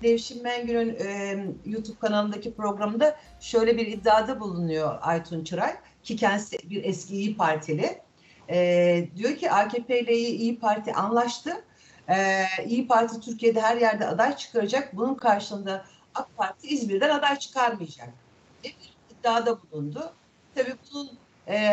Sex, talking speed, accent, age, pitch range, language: female, 130 wpm, native, 60-79, 185-245 Hz, Turkish